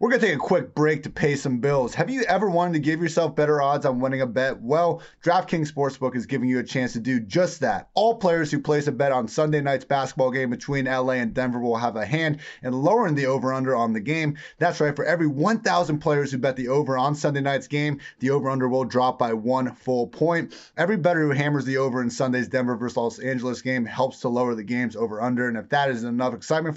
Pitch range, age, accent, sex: 130-150 Hz, 30-49, American, male